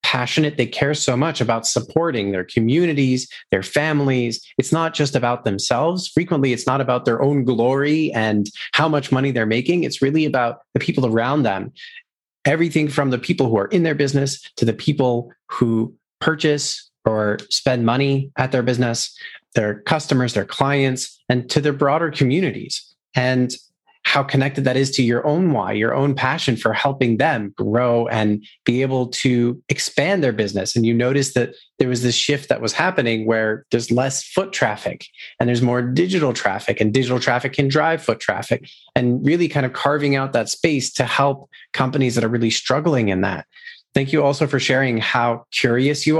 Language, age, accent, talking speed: English, 30-49, American, 185 wpm